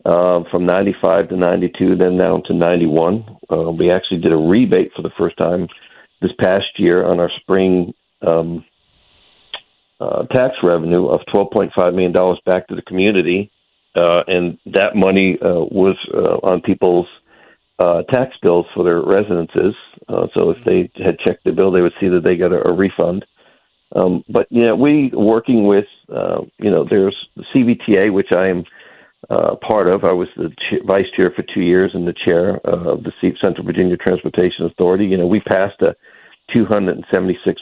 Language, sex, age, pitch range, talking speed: English, male, 50-69, 85-95 Hz, 180 wpm